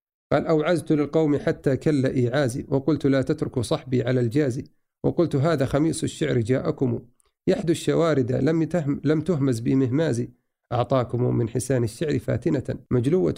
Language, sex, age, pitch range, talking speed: Arabic, male, 50-69, 130-155 Hz, 130 wpm